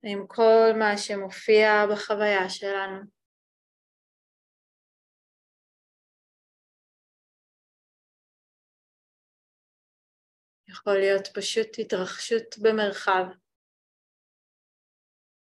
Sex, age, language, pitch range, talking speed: female, 20-39, Hebrew, 185-210 Hz, 45 wpm